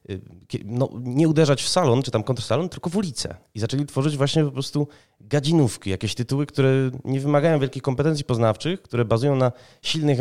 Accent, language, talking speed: native, Polish, 170 wpm